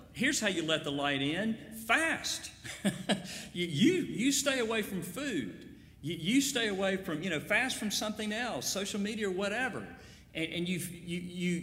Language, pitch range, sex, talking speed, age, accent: English, 120-195 Hz, male, 180 wpm, 50-69, American